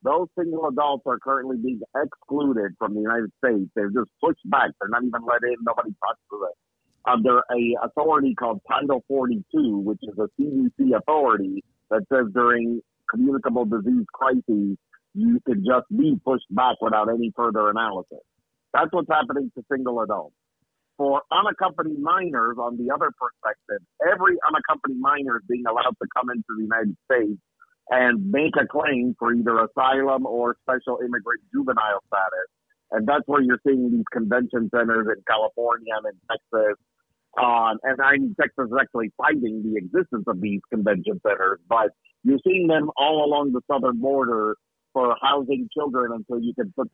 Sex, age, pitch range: male, 50-69, 115-150 Hz